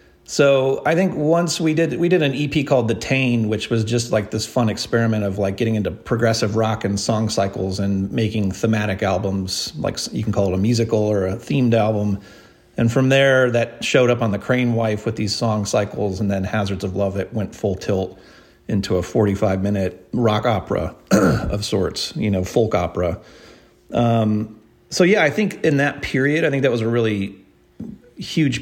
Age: 40-59